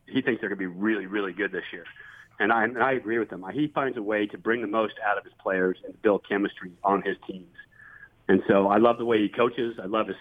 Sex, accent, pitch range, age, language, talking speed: male, American, 105-125 Hz, 40-59, English, 275 wpm